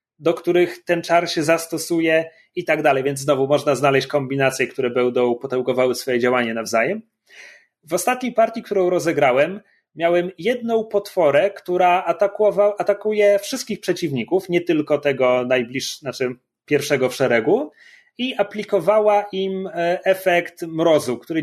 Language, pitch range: Polish, 145-210 Hz